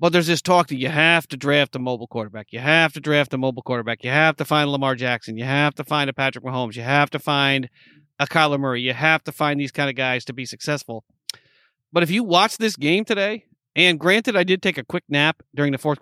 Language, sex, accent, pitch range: English, male, American, 135-165 Hz